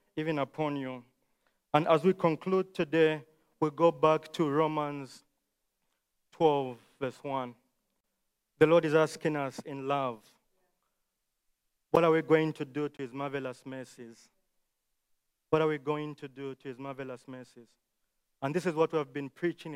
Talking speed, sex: 155 wpm, male